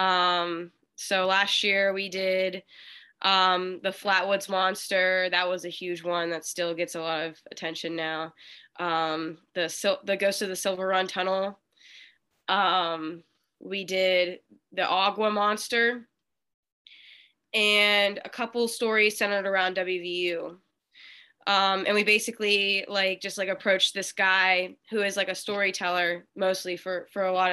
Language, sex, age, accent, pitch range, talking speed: English, female, 10-29, American, 185-210 Hz, 145 wpm